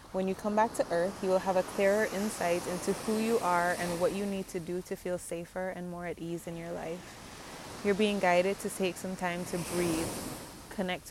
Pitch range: 165-185 Hz